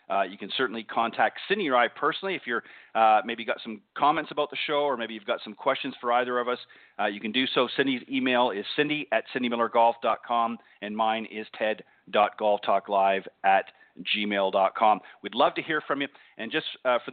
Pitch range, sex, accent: 110-140 Hz, male, American